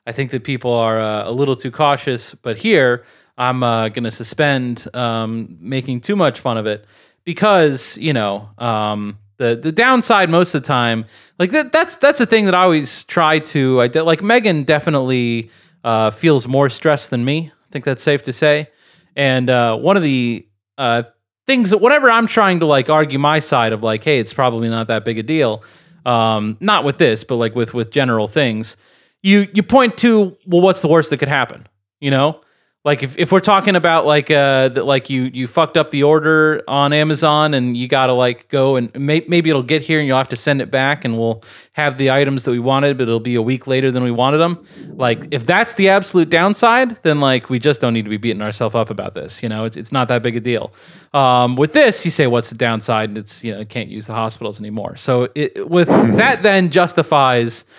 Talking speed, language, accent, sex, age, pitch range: 225 wpm, English, American, male, 30-49, 115-155 Hz